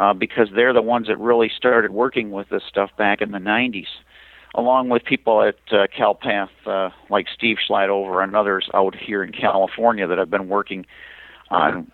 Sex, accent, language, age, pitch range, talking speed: male, American, English, 50-69, 105-130 Hz, 185 wpm